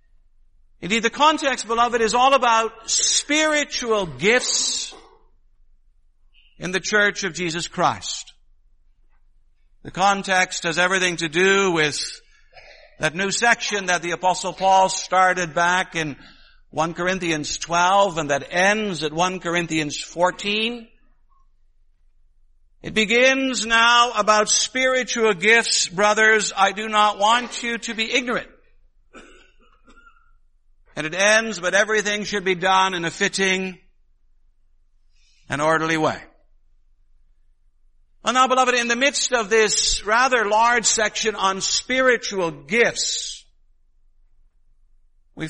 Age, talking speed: 60-79, 115 wpm